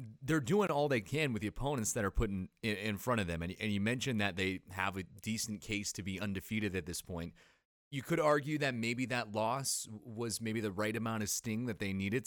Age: 30-49